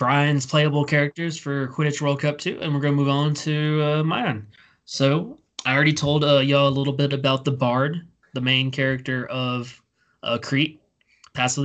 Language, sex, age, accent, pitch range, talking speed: English, male, 20-39, American, 125-145 Hz, 185 wpm